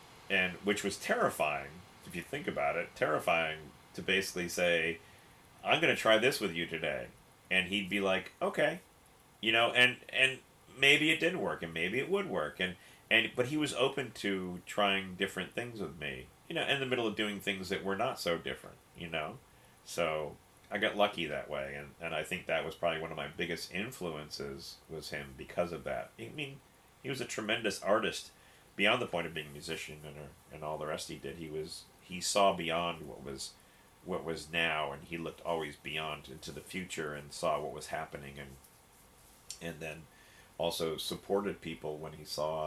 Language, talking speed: English, 200 wpm